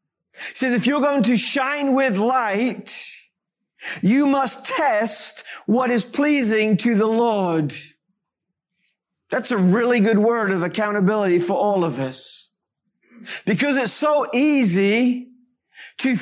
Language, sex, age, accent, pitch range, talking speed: English, male, 50-69, American, 200-260 Hz, 125 wpm